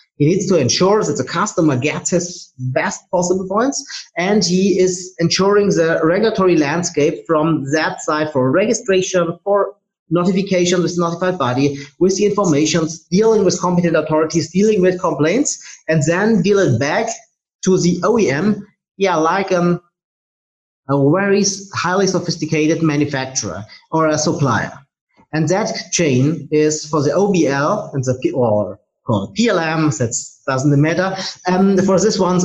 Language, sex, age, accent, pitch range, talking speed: English, male, 30-49, German, 150-185 Hz, 145 wpm